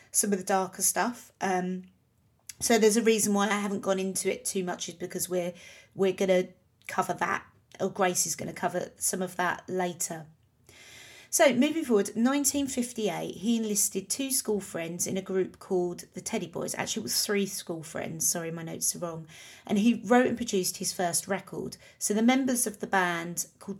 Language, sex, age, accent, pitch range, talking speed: English, female, 30-49, British, 175-215 Hz, 195 wpm